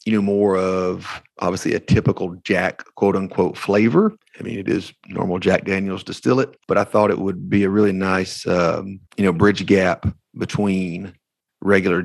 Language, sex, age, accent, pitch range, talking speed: English, male, 40-59, American, 90-100 Hz, 175 wpm